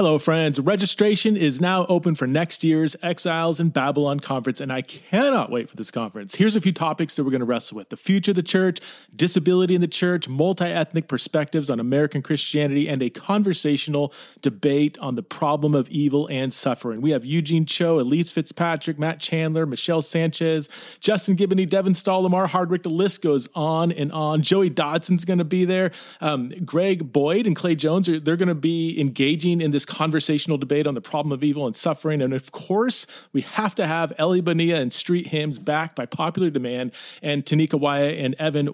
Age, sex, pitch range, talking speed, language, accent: 30-49, male, 140-175 Hz, 195 wpm, English, American